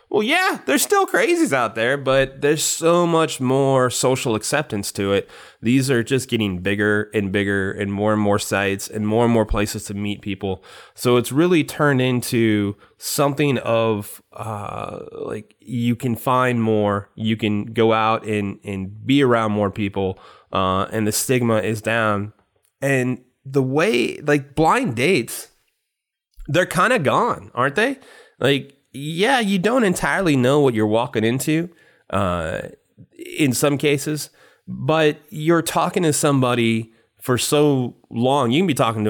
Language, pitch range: English, 110-140 Hz